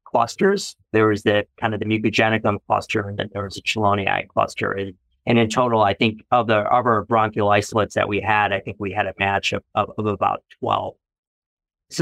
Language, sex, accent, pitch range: English, male, American, 100-120 Hz